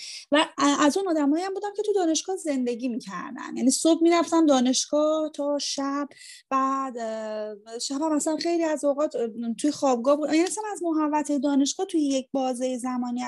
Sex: female